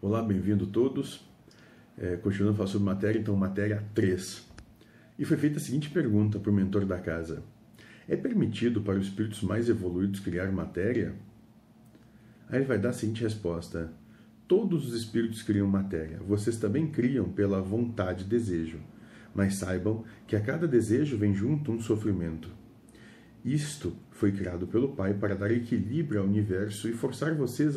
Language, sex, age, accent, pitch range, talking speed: Portuguese, male, 40-59, Brazilian, 95-115 Hz, 160 wpm